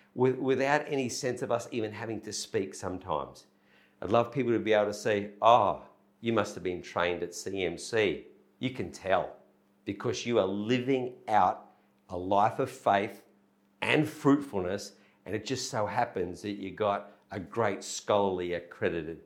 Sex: male